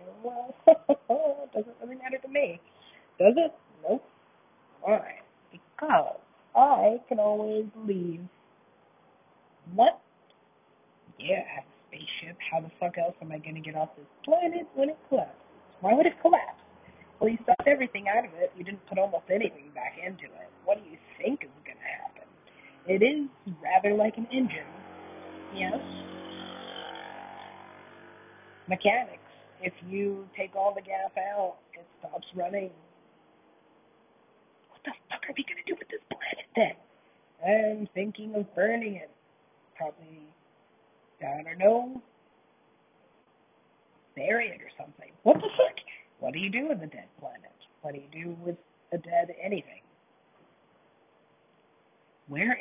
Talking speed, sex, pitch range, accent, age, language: 145 wpm, female, 170-255 Hz, American, 30-49, English